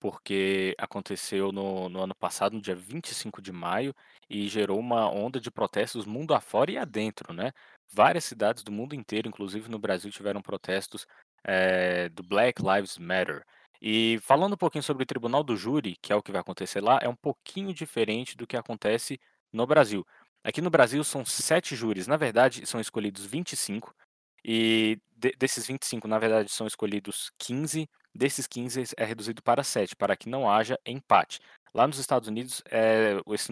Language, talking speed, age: Portuguese, 170 wpm, 20-39